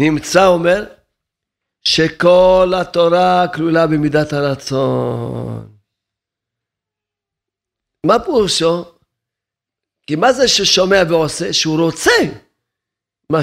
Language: Hebrew